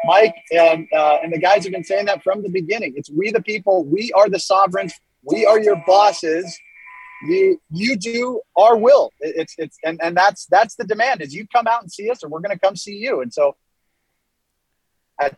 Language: English